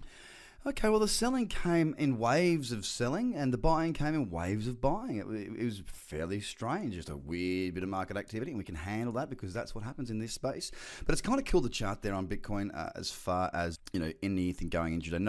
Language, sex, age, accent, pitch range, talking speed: English, male, 30-49, Australian, 90-130 Hz, 250 wpm